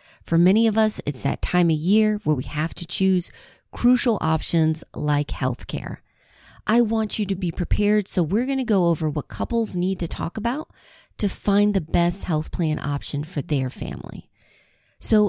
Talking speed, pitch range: 190 wpm, 155-205 Hz